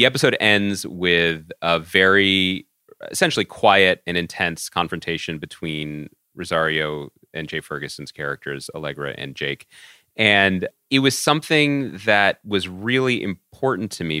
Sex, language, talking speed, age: male, English, 125 wpm, 30-49